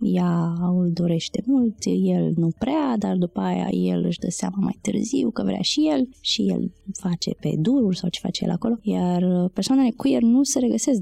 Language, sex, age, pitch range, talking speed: Romanian, female, 20-39, 170-205 Hz, 200 wpm